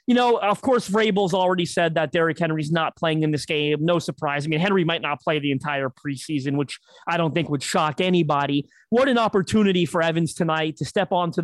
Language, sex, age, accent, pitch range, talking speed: English, male, 30-49, American, 160-205 Hz, 220 wpm